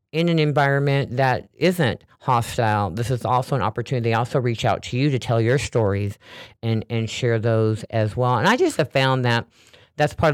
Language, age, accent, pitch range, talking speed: English, 50-69, American, 115-140 Hz, 205 wpm